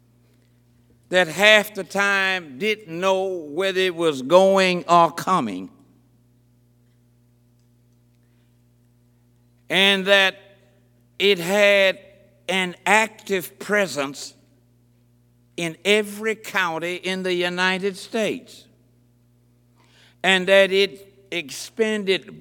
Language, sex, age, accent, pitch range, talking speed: English, male, 60-79, American, 120-195 Hz, 80 wpm